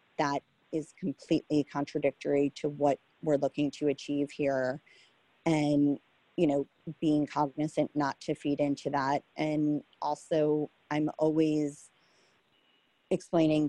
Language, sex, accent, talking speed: English, female, American, 115 wpm